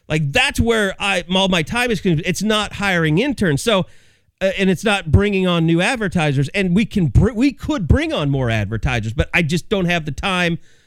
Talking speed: 205 wpm